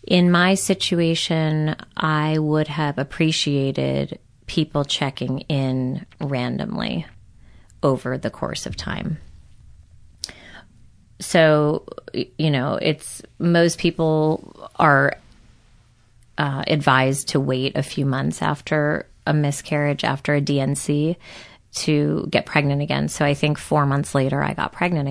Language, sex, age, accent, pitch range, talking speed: English, female, 30-49, American, 130-175 Hz, 115 wpm